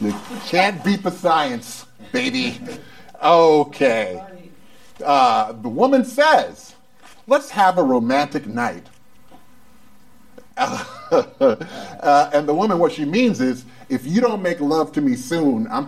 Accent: American